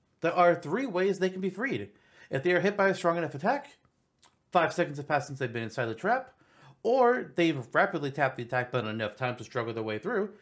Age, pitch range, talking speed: 30-49, 120-170 Hz, 235 wpm